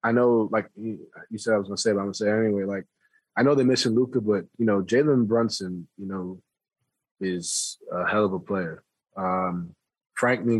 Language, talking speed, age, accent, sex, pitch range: English, 215 wpm, 20-39, American, male, 100-115 Hz